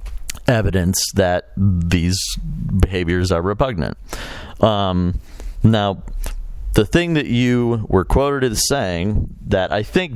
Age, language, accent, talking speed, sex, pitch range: 40-59, English, American, 110 wpm, male, 85-110 Hz